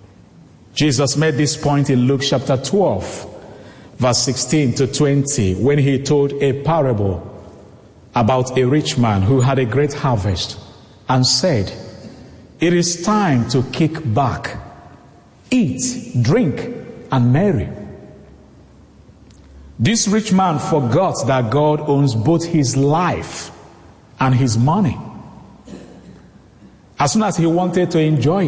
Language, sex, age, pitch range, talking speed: English, male, 50-69, 110-155 Hz, 120 wpm